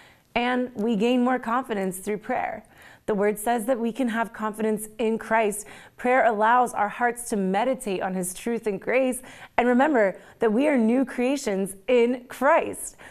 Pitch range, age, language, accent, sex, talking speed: 180-225 Hz, 30-49, English, American, female, 170 wpm